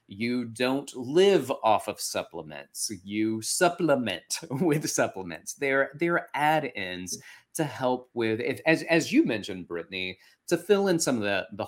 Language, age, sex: English, 30-49, male